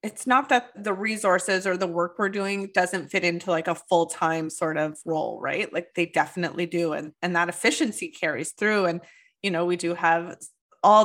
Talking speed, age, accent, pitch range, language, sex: 200 wpm, 20-39, American, 165-195 Hz, English, female